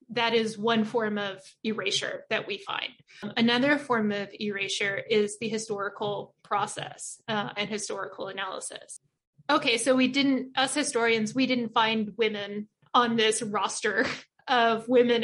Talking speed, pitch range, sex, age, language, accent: 140 wpm, 215-245 Hz, female, 20-39, English, American